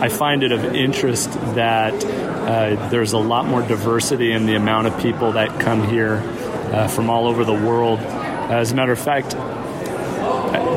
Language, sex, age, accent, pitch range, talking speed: English, male, 40-59, American, 110-125 Hz, 180 wpm